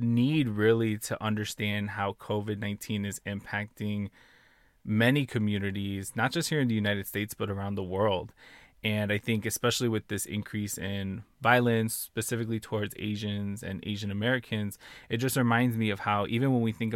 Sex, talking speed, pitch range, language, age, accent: male, 165 wpm, 100-115 Hz, English, 20-39, American